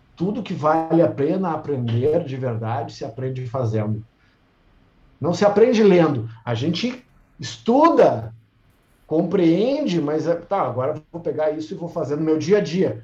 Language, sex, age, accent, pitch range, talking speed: Portuguese, male, 50-69, Brazilian, 125-180 Hz, 145 wpm